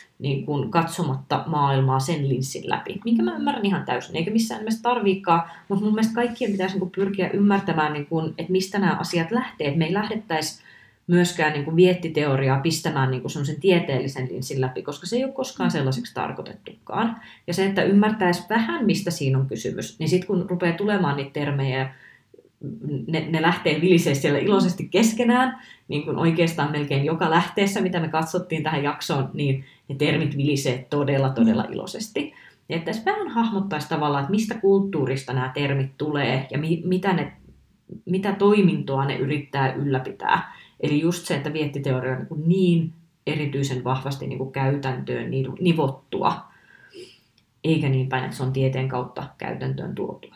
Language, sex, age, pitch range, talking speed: Finnish, female, 30-49, 140-190 Hz, 150 wpm